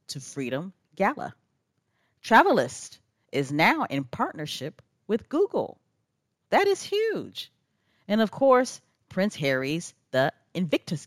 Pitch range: 140-225 Hz